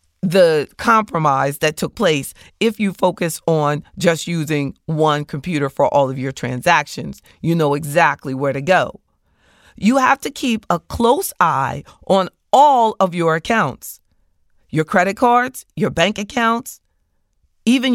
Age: 40-59